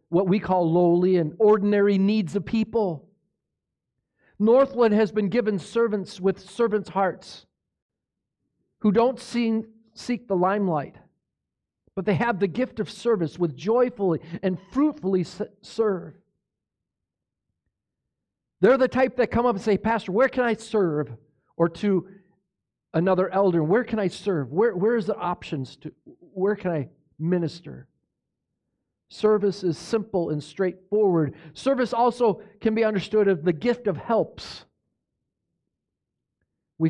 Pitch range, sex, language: 165-220 Hz, male, English